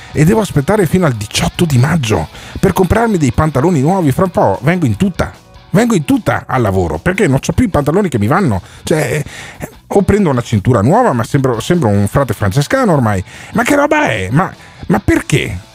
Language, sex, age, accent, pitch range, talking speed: Italian, male, 40-59, native, 115-190 Hz, 200 wpm